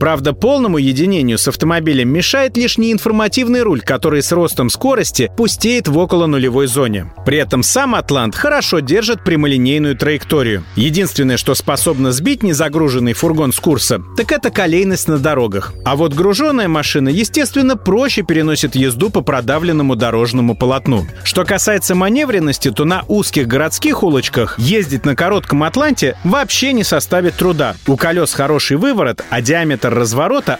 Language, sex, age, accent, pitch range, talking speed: Russian, male, 30-49, native, 130-200 Hz, 145 wpm